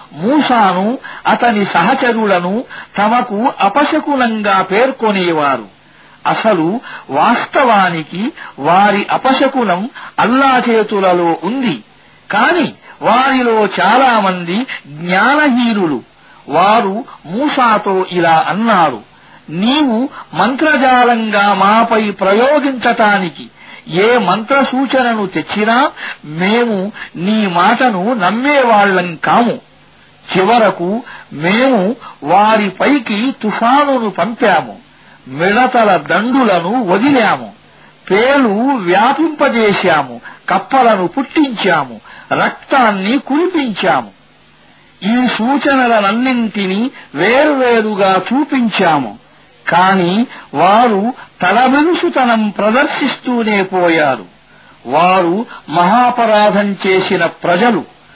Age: 60-79